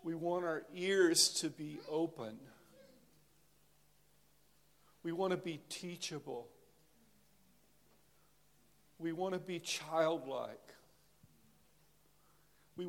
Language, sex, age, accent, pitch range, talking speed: English, male, 50-69, American, 165-190 Hz, 85 wpm